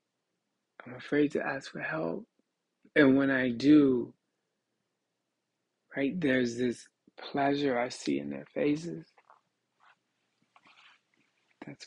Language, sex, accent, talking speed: English, male, American, 100 wpm